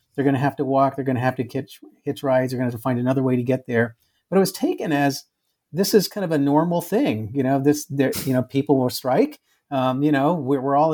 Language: English